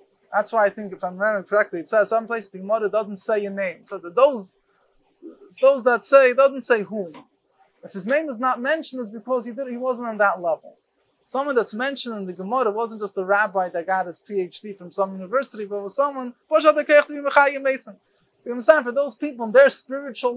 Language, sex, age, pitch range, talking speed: English, male, 30-49, 210-275 Hz, 205 wpm